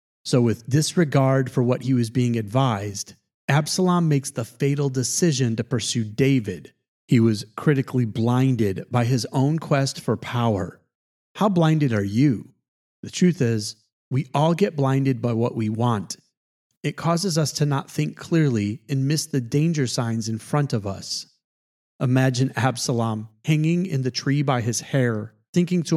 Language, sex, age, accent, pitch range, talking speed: English, male, 30-49, American, 120-155 Hz, 160 wpm